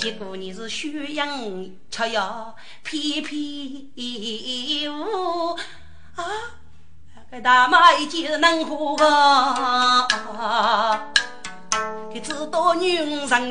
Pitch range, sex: 285-375 Hz, female